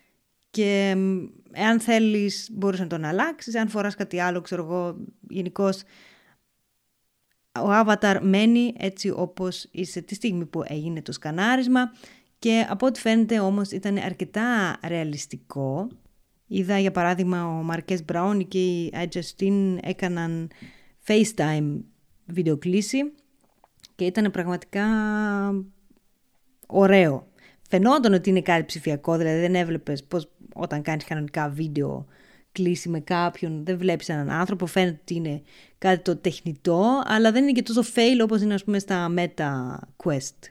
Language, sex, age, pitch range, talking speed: Greek, female, 20-39, 170-210 Hz, 130 wpm